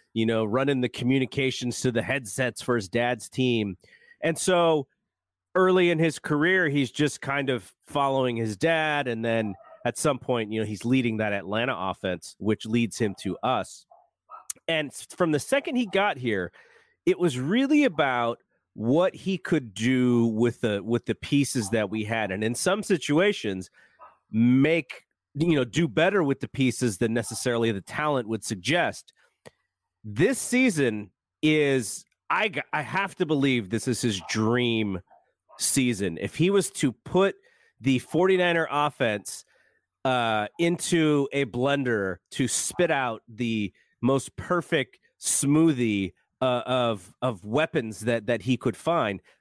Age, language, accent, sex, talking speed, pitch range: 30-49, English, American, male, 150 wpm, 115-160 Hz